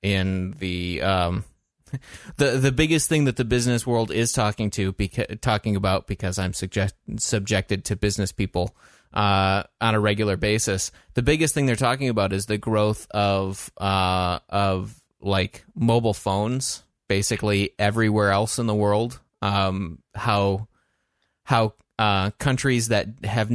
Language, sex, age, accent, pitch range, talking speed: English, male, 20-39, American, 100-120 Hz, 145 wpm